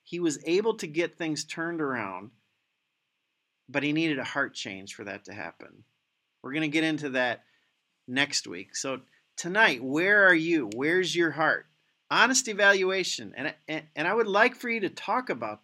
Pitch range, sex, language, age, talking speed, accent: 125-165 Hz, male, English, 40-59, 175 wpm, American